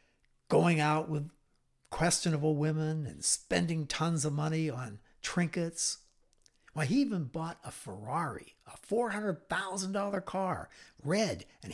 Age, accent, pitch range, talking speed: 60-79, American, 125-165 Hz, 120 wpm